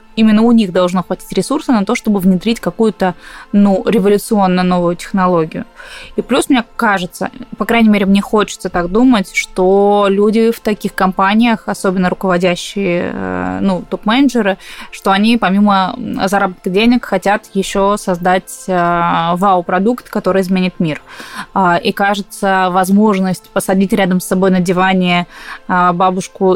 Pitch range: 180-215 Hz